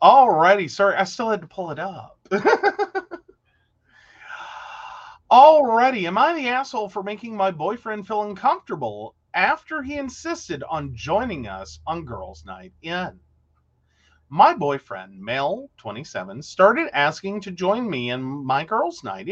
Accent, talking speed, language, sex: American, 135 wpm, English, male